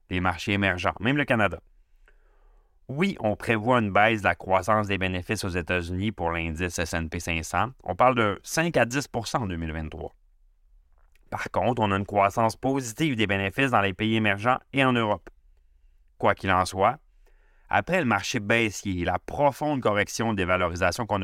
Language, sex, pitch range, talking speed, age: French, male, 90-120 Hz, 170 wpm, 30-49